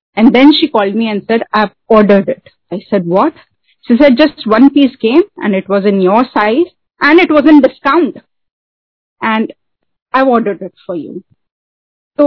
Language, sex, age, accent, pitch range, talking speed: Hindi, female, 30-49, native, 210-275 Hz, 180 wpm